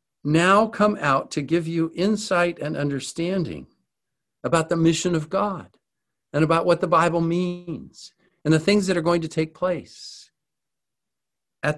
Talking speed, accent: 155 wpm, American